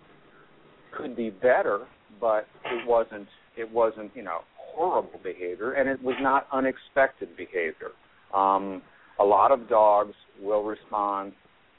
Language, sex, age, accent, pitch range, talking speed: English, male, 50-69, American, 100-115 Hz, 125 wpm